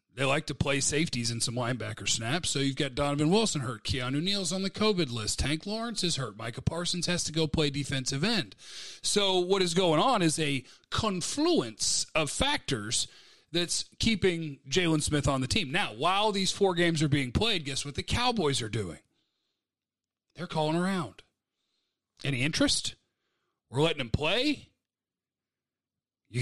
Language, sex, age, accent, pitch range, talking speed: English, male, 40-59, American, 135-185 Hz, 170 wpm